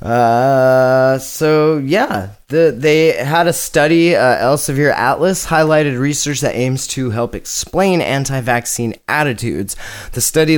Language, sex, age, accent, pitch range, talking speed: English, male, 30-49, American, 115-160 Hz, 120 wpm